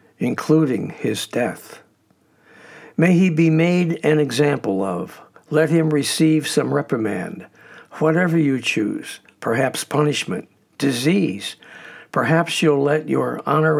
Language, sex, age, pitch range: English, male, 60-79, 135-155 Hz